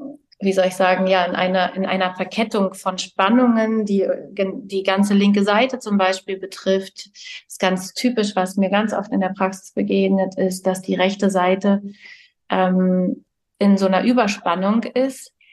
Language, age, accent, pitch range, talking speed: German, 30-49, German, 185-225 Hz, 160 wpm